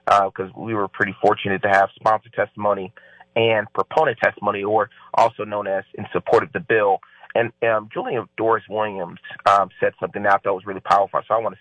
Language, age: English, 30-49